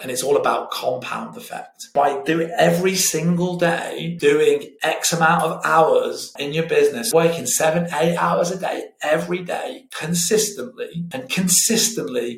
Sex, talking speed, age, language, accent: male, 145 wpm, 30-49, English, British